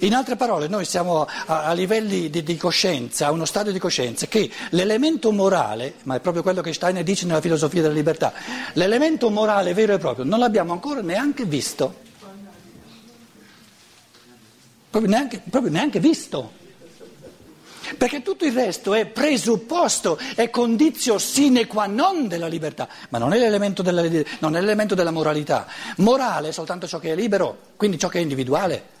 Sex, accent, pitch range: male, native, 165-225 Hz